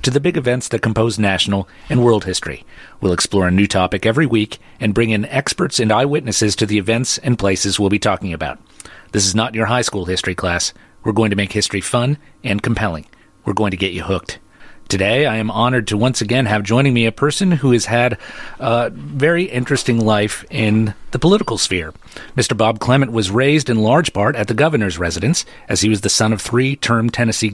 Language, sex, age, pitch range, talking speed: English, male, 40-59, 100-125 Hz, 210 wpm